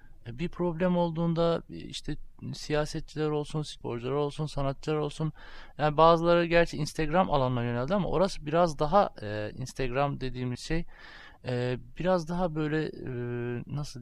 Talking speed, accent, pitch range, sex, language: 130 wpm, native, 120-155 Hz, male, Turkish